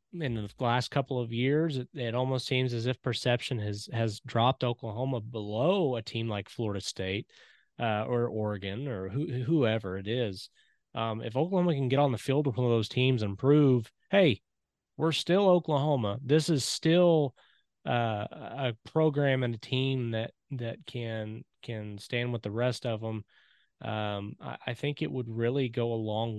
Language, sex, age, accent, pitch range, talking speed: English, male, 20-39, American, 110-145 Hz, 180 wpm